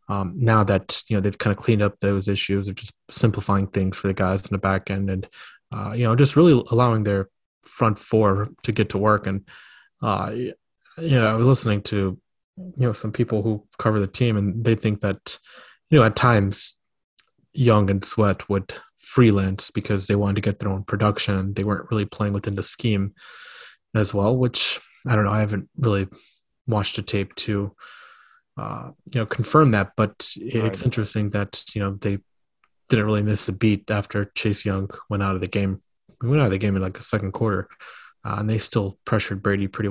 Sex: male